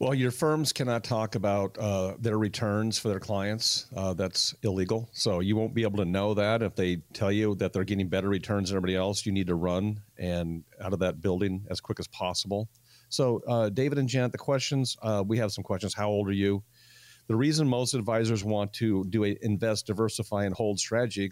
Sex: male